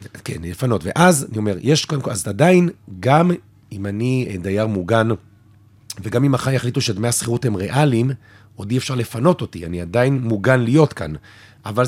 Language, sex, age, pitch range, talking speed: Hebrew, male, 40-59, 105-135 Hz, 170 wpm